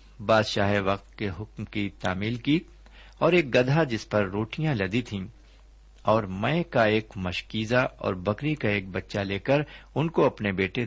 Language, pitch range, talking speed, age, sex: Urdu, 85-130 Hz, 170 wpm, 60-79, male